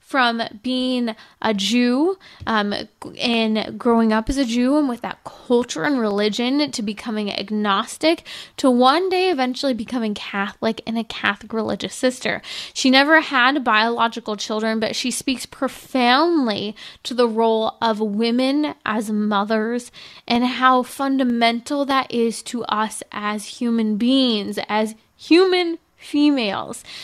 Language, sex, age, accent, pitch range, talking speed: English, female, 20-39, American, 215-265 Hz, 135 wpm